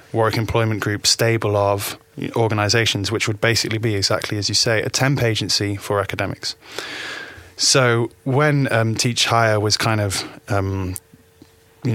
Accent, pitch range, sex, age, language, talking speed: British, 100-115 Hz, male, 20-39, English, 145 wpm